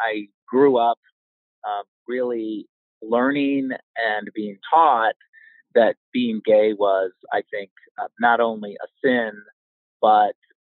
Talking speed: 120 wpm